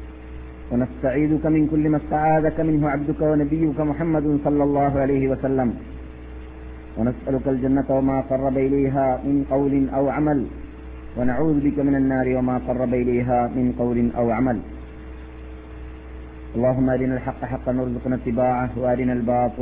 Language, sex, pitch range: Malayalam, male, 120-135 Hz